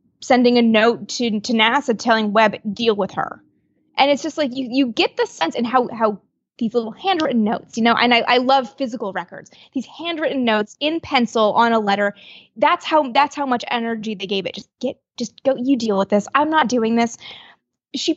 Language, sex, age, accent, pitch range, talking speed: English, female, 20-39, American, 215-265 Hz, 215 wpm